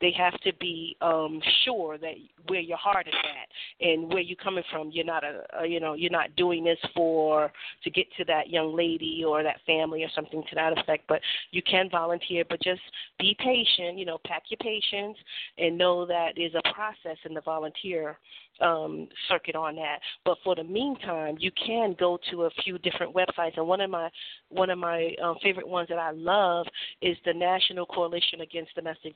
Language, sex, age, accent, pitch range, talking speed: English, female, 40-59, American, 165-185 Hz, 205 wpm